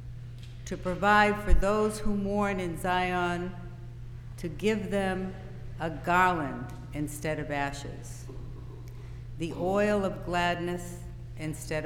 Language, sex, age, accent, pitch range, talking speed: English, female, 60-79, American, 120-185 Hz, 105 wpm